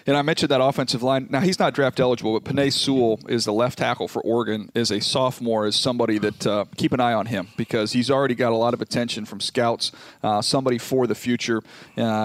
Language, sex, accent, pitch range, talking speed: English, male, American, 110-135 Hz, 235 wpm